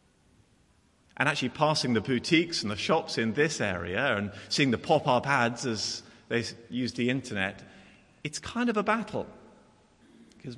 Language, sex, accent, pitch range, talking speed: English, male, British, 115-180 Hz, 155 wpm